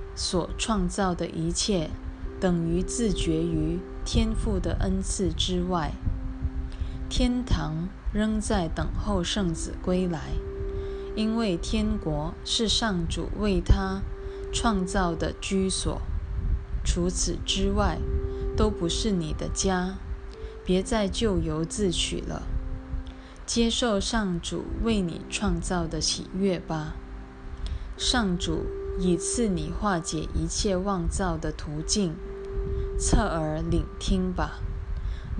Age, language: 20-39, Chinese